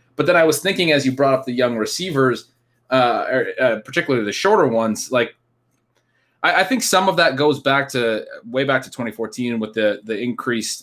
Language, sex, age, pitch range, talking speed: English, male, 20-39, 110-130 Hz, 200 wpm